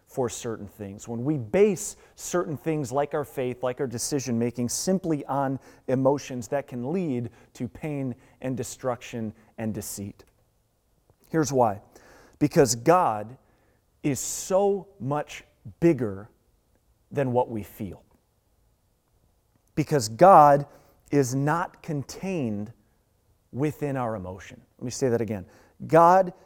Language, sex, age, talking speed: English, male, 30-49, 120 wpm